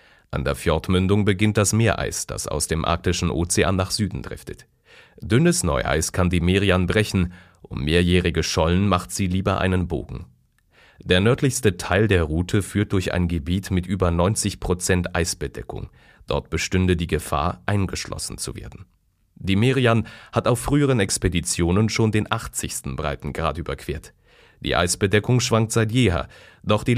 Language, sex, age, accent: German, male, 30-49, German